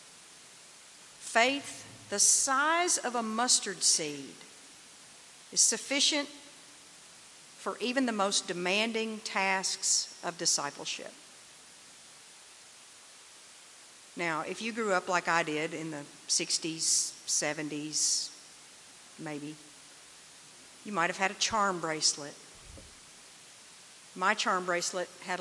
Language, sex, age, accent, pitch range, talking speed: English, female, 50-69, American, 160-220 Hz, 95 wpm